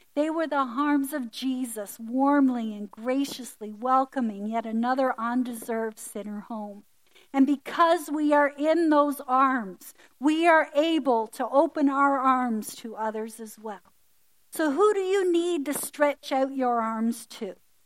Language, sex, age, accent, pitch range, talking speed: Russian, female, 50-69, American, 220-285 Hz, 150 wpm